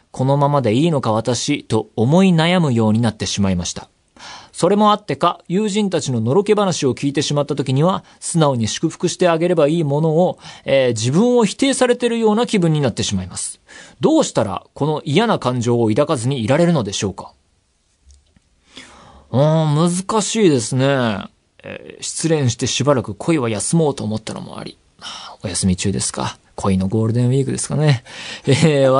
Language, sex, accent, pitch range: Japanese, male, native, 110-165 Hz